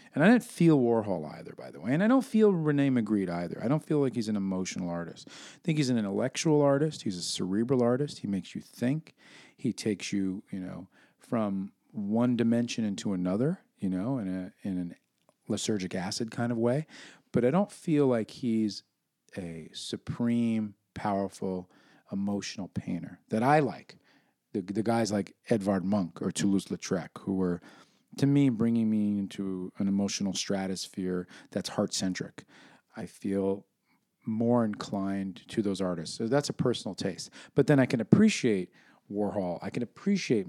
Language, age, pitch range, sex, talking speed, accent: English, 40-59, 95-130 Hz, male, 170 wpm, American